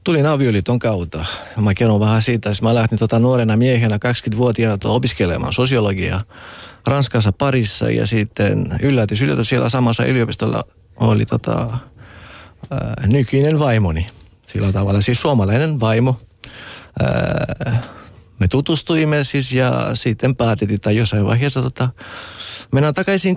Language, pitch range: Finnish, 100-125 Hz